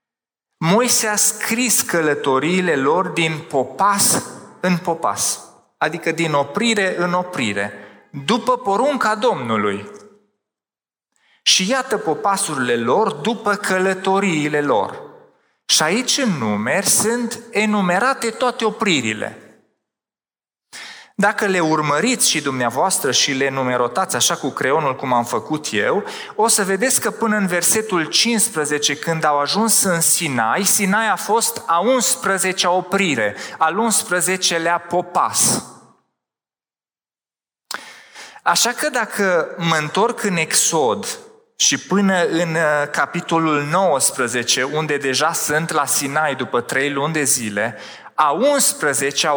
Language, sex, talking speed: Romanian, male, 115 wpm